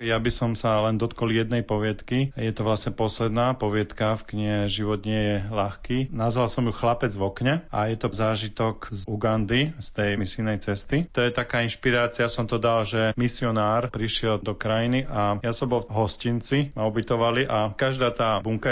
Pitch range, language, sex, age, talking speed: 105-125 Hz, Slovak, male, 40-59, 185 wpm